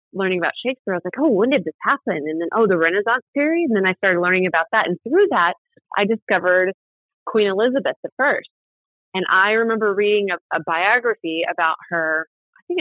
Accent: American